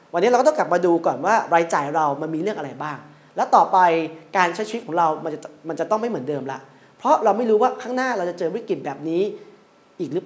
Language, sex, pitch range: Thai, male, 160-200 Hz